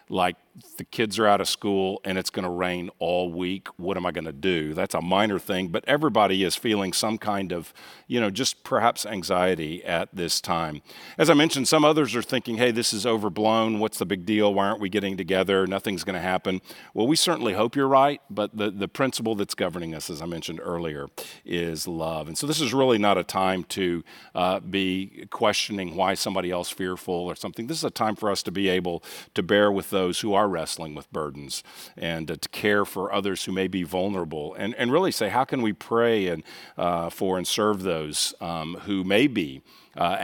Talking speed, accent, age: 220 wpm, American, 50-69